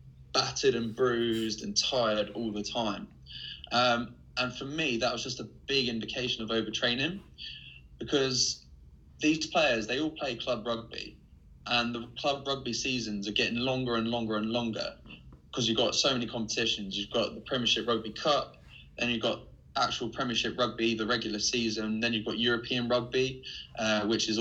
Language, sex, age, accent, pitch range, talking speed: English, male, 20-39, British, 105-125 Hz, 170 wpm